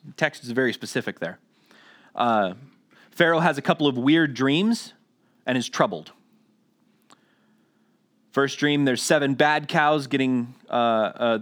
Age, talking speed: 30-49, 130 wpm